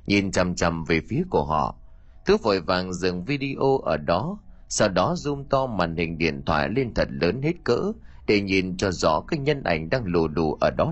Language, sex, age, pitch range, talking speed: Vietnamese, male, 30-49, 80-115 Hz, 215 wpm